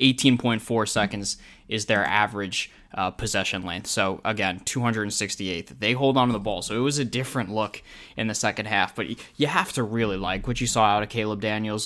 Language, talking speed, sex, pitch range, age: English, 200 wpm, male, 100-120 Hz, 10-29